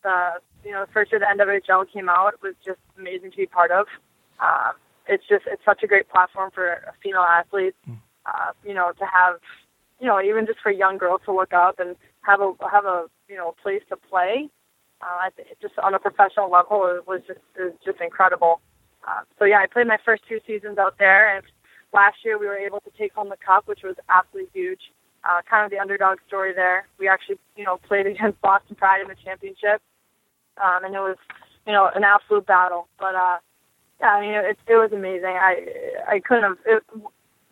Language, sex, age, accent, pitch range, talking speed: English, female, 20-39, American, 180-205 Hz, 205 wpm